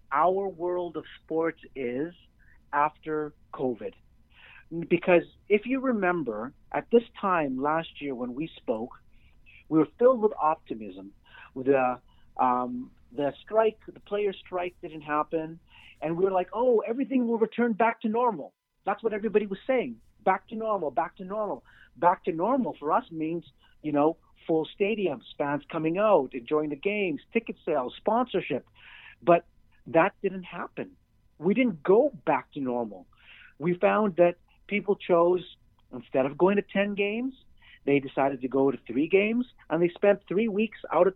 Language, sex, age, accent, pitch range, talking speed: English, male, 50-69, American, 145-205 Hz, 160 wpm